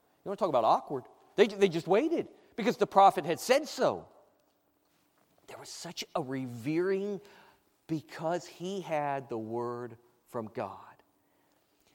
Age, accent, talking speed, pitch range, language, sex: 40-59, American, 135 wpm, 135-195 Hz, English, male